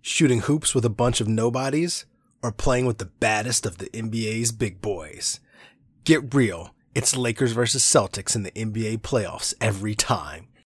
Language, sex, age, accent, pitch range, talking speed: English, male, 30-49, American, 105-135 Hz, 160 wpm